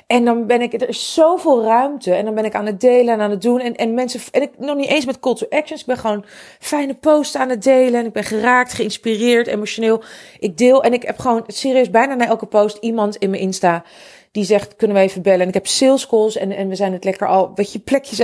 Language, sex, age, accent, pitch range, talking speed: Dutch, female, 40-59, Dutch, 195-255 Hz, 265 wpm